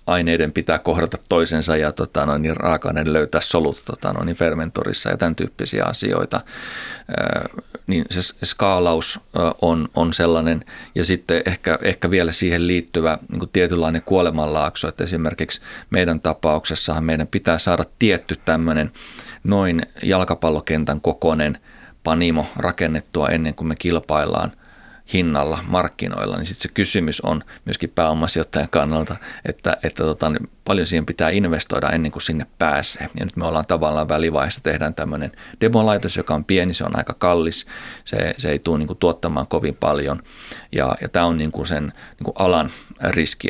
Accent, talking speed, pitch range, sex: native, 135 wpm, 75-85 Hz, male